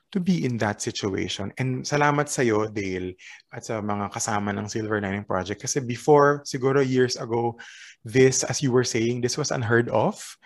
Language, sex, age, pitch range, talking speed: Filipino, male, 20-39, 115-145 Hz, 180 wpm